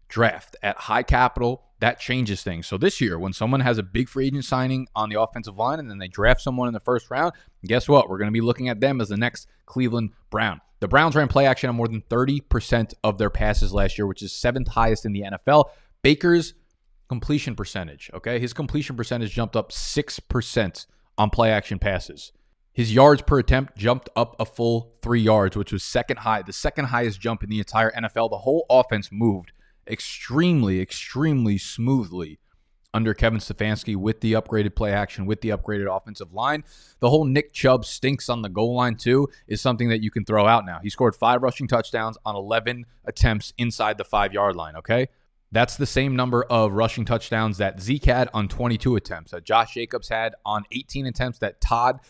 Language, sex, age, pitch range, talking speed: English, male, 20-39, 105-125 Hz, 205 wpm